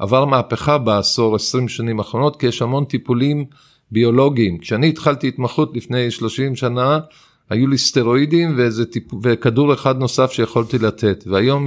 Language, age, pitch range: Hebrew, 50-69, 115-135 Hz